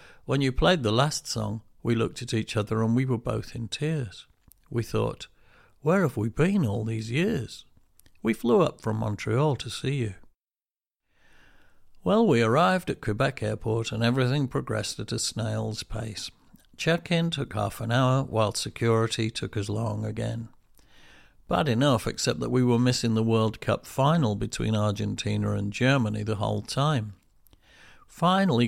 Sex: male